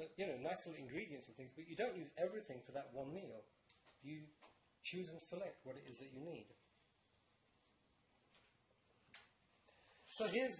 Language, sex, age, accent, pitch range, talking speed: English, male, 40-59, British, 145-200 Hz, 160 wpm